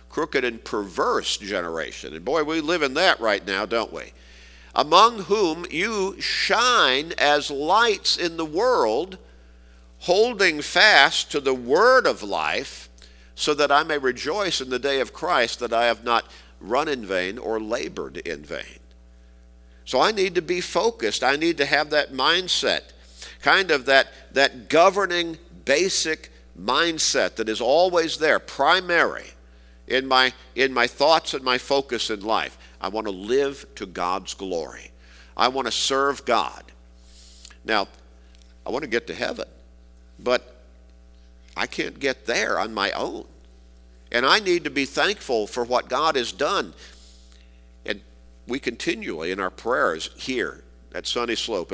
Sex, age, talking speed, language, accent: male, 50-69, 155 wpm, English, American